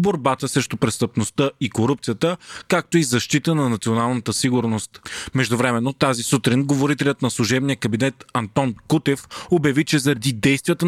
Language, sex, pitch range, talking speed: Bulgarian, male, 125-150 Hz, 140 wpm